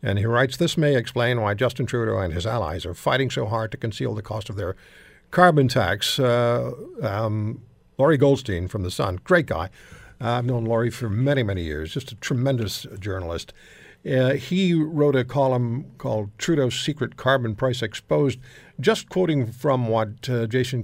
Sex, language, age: male, English, 60-79